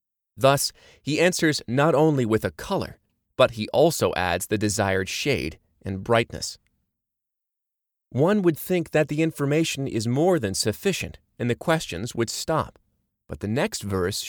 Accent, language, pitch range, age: American, English, 105-145 Hz, 30-49